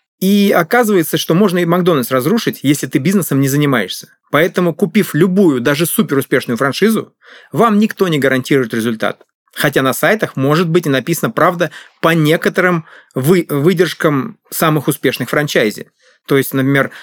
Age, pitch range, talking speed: 30-49, 145-195 Hz, 140 wpm